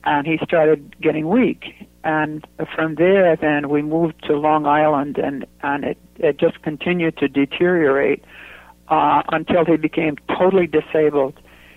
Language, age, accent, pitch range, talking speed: English, 60-79, American, 145-160 Hz, 145 wpm